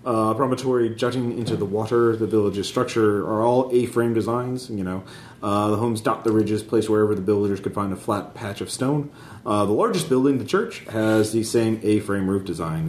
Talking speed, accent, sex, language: 205 wpm, American, male, English